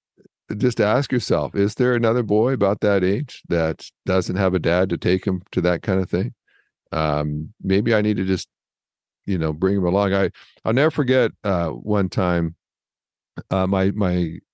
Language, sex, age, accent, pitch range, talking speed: English, male, 50-69, American, 90-120 Hz, 180 wpm